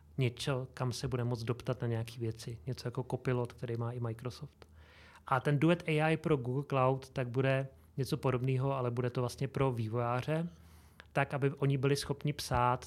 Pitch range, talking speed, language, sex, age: 120-135 Hz, 180 wpm, Czech, male, 30-49